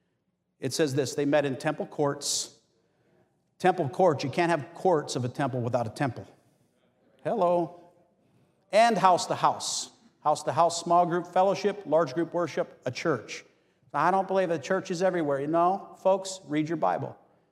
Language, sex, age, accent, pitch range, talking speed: English, male, 50-69, American, 140-180 Hz, 170 wpm